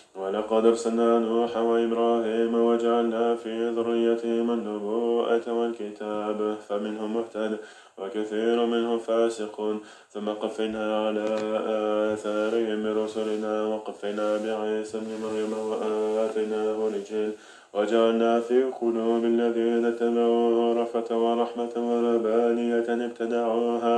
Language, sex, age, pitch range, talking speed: French, male, 20-39, 110-115 Hz, 85 wpm